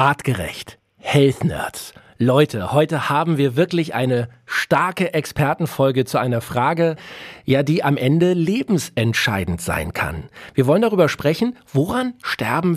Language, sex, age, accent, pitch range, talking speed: German, male, 40-59, German, 120-165 Hz, 125 wpm